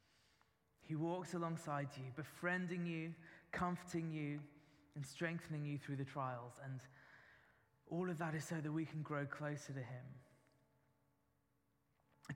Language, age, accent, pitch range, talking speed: English, 20-39, British, 140-165 Hz, 135 wpm